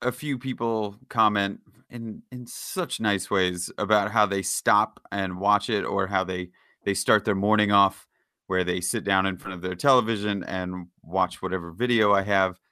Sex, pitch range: male, 95-115 Hz